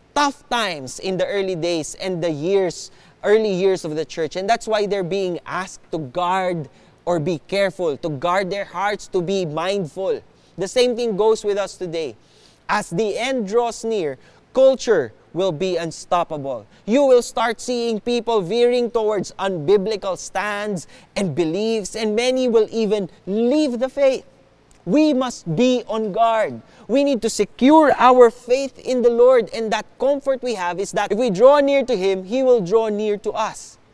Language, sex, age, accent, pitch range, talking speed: English, male, 20-39, Filipino, 190-245 Hz, 175 wpm